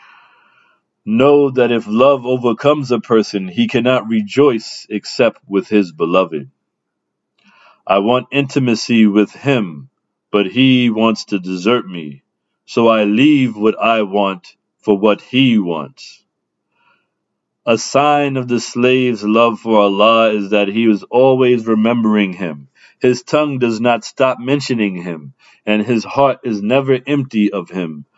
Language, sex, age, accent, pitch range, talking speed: English, male, 40-59, American, 105-130 Hz, 140 wpm